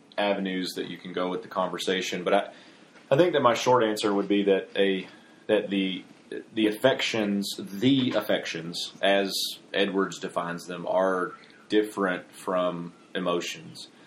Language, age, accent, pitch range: English, 30-49, American, 95-105 Hz